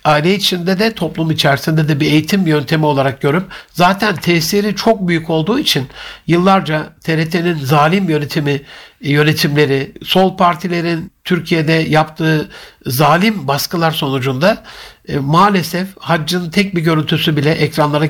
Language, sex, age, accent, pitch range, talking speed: Turkish, male, 60-79, native, 155-190 Hz, 125 wpm